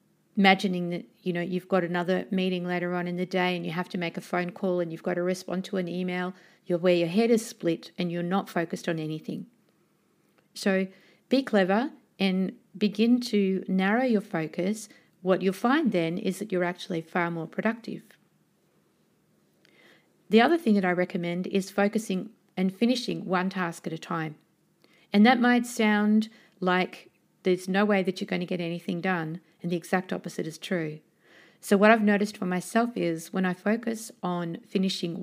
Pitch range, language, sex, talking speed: 175-210 Hz, English, female, 185 wpm